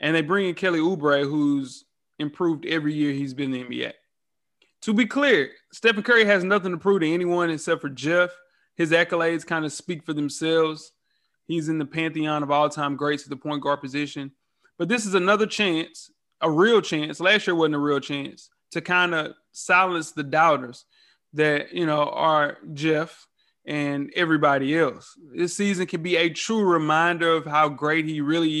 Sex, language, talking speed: male, English, 185 wpm